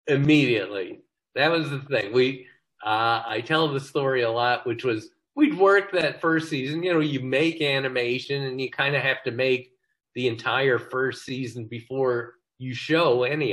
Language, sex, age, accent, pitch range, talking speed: English, male, 40-59, American, 110-145 Hz, 180 wpm